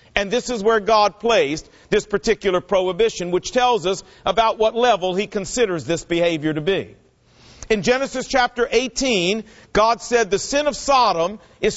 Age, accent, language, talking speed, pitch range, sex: 50-69, American, English, 165 wpm, 195-250 Hz, male